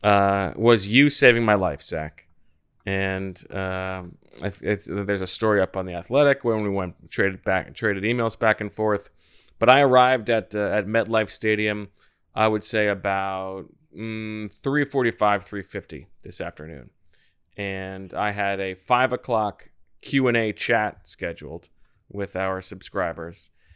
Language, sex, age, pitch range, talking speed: English, male, 20-39, 95-110 Hz, 150 wpm